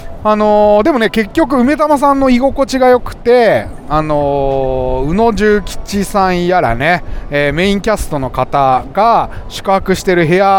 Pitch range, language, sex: 135-200 Hz, Japanese, male